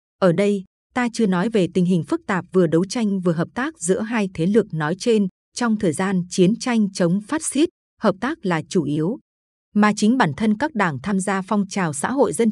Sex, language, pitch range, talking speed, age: female, Vietnamese, 180-230 Hz, 230 wpm, 20-39